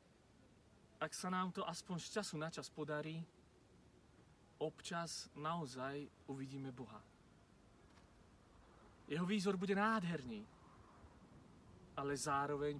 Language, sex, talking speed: Slovak, male, 95 wpm